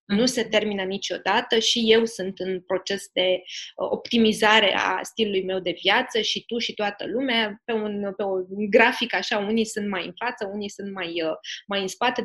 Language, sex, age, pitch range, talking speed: Romanian, female, 20-39, 200-240 Hz, 180 wpm